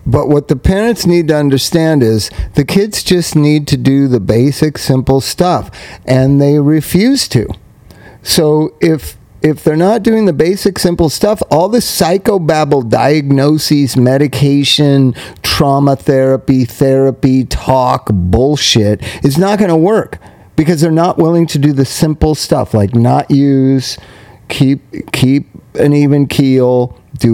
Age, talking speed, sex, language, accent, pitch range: 40-59, 145 wpm, male, English, American, 125-160 Hz